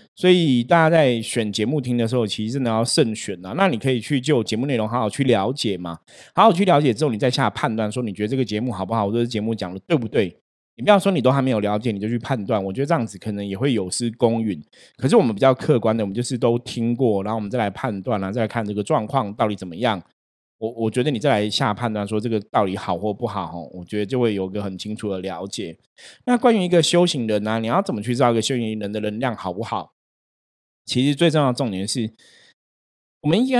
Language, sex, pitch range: Chinese, male, 105-130 Hz